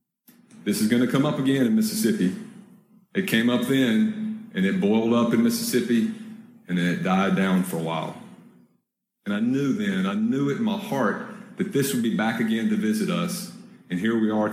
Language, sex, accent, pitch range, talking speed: English, male, American, 135-215 Hz, 200 wpm